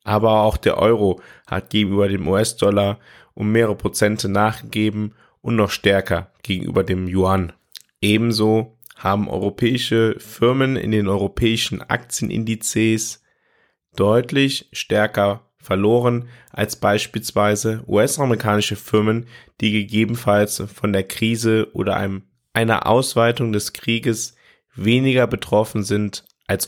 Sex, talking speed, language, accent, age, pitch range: male, 105 wpm, German, German, 20-39, 105-120 Hz